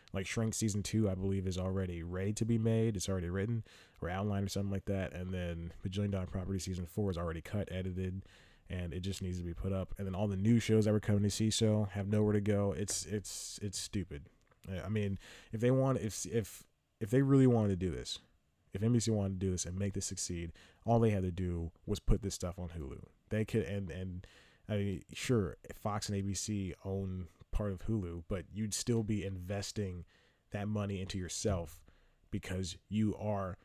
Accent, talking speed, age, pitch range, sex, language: American, 215 wpm, 20-39, 90-105 Hz, male, English